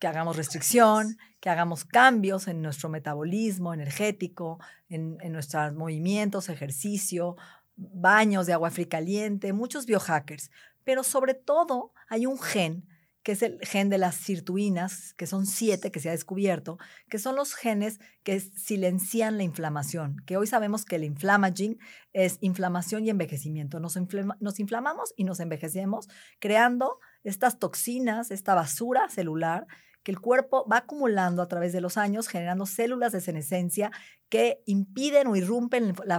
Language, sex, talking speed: Spanish, female, 150 wpm